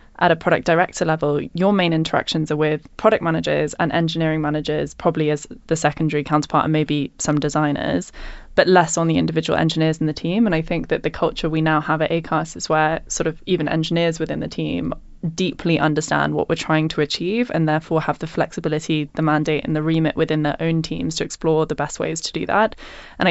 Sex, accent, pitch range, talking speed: female, British, 150-170 Hz, 215 wpm